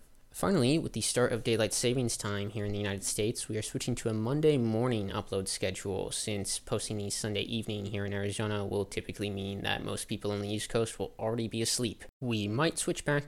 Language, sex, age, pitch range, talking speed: English, male, 20-39, 100-125 Hz, 215 wpm